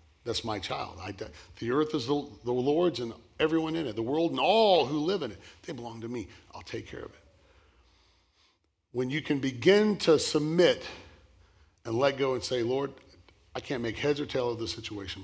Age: 40-59